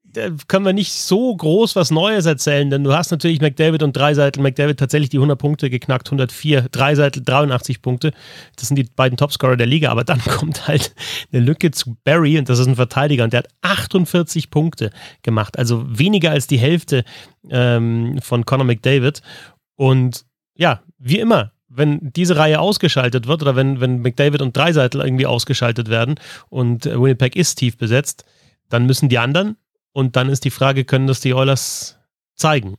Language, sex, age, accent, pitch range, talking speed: German, male, 30-49, German, 120-150 Hz, 180 wpm